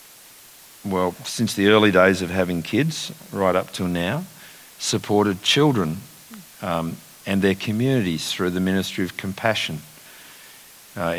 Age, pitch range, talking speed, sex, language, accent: 50-69, 90-110 Hz, 130 wpm, male, English, Australian